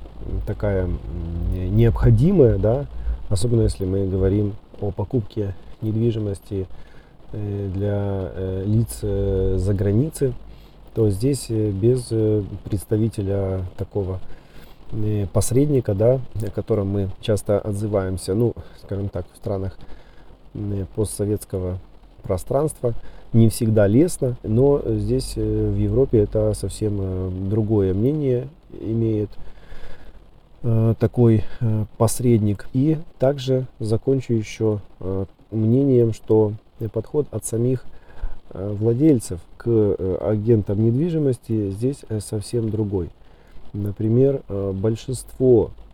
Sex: male